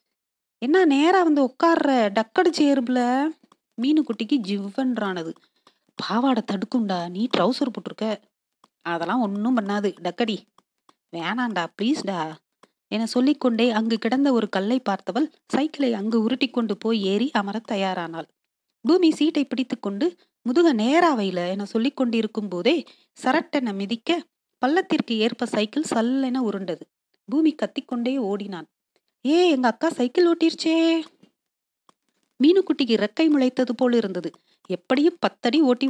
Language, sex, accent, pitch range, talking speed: Tamil, female, native, 215-290 Hz, 115 wpm